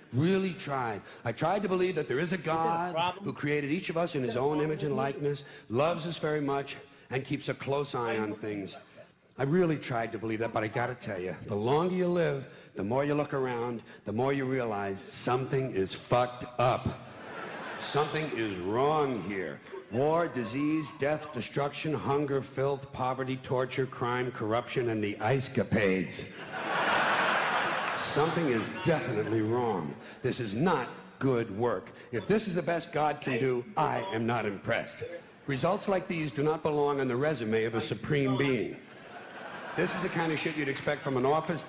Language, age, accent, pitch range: English, 60-79, American, 125-155 Hz